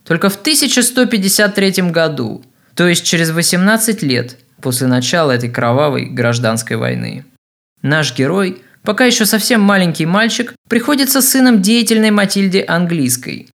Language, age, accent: Russian, 20-39, native